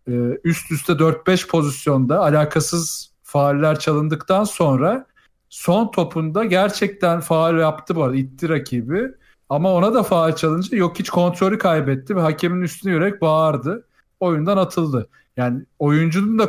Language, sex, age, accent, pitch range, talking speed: Turkish, male, 40-59, native, 145-180 Hz, 130 wpm